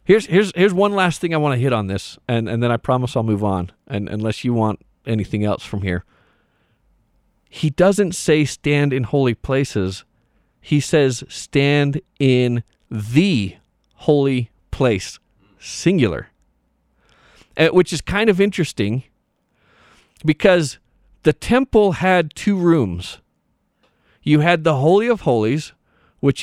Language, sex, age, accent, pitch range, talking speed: English, male, 40-59, American, 115-160 Hz, 140 wpm